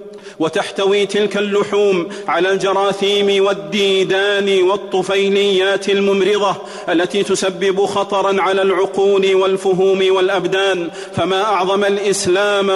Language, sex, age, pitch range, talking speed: Arabic, male, 40-59, 195-200 Hz, 85 wpm